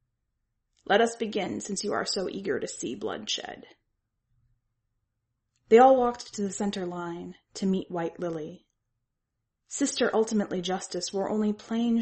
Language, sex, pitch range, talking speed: English, female, 155-215 Hz, 140 wpm